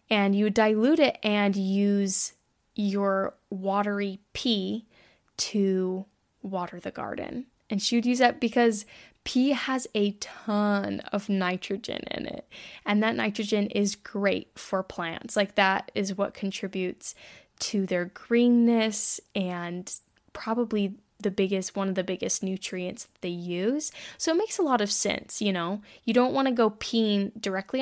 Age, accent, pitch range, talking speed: 10-29, American, 195-240 Hz, 150 wpm